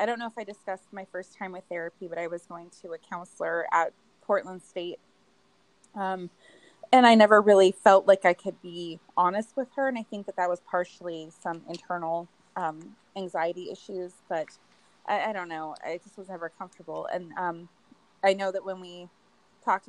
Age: 20-39